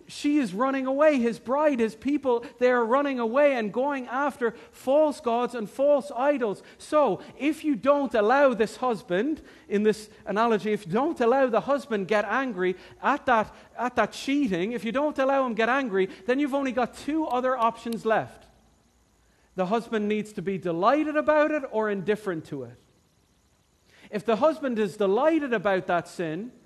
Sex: male